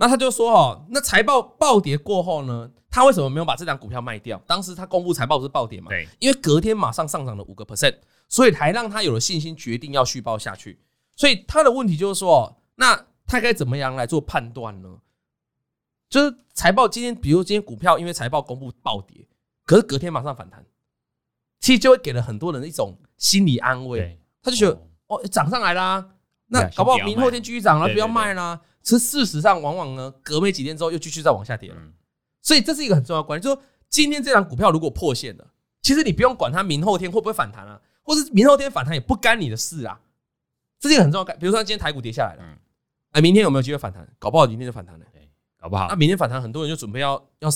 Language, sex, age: Chinese, male, 20-39